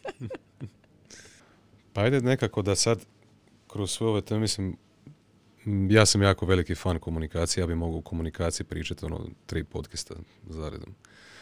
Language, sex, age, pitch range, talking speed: Croatian, male, 30-49, 85-105 Hz, 135 wpm